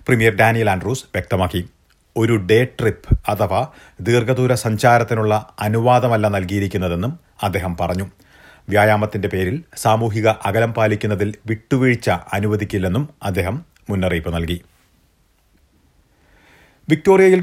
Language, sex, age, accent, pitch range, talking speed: Malayalam, male, 40-59, native, 95-125 Hz, 85 wpm